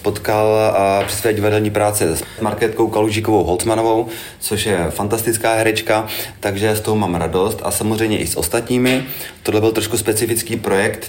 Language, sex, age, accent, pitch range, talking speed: Czech, male, 30-49, native, 95-110 Hz, 150 wpm